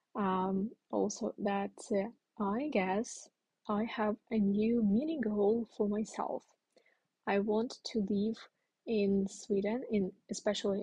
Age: 20-39